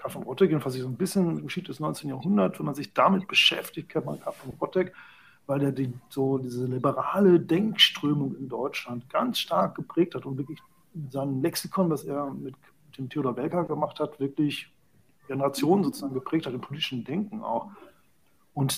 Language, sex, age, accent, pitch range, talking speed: German, male, 40-59, German, 135-170 Hz, 175 wpm